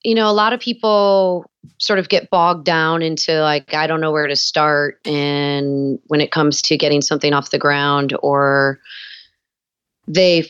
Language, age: English, 30-49